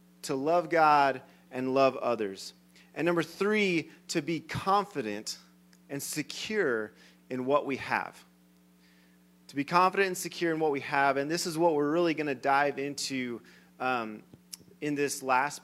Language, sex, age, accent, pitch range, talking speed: English, male, 30-49, American, 110-170 Hz, 155 wpm